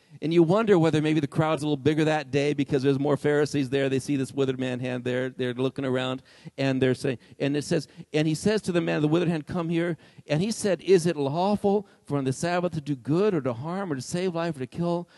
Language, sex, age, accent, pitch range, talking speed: English, male, 50-69, American, 135-185 Hz, 270 wpm